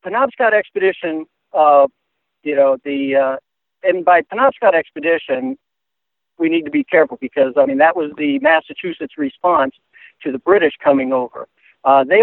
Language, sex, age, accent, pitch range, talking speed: English, male, 60-79, American, 135-180 Hz, 150 wpm